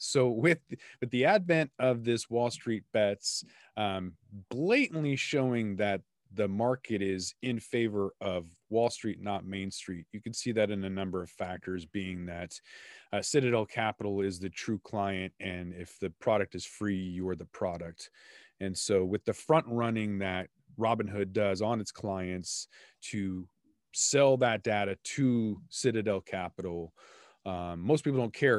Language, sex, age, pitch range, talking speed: English, male, 30-49, 95-115 Hz, 160 wpm